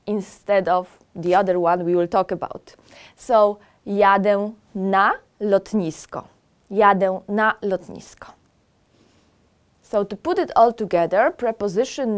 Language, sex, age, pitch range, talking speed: English, female, 20-39, 180-240 Hz, 115 wpm